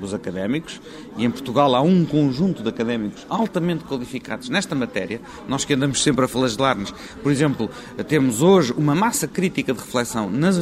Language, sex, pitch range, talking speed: Portuguese, male, 125-170 Hz, 170 wpm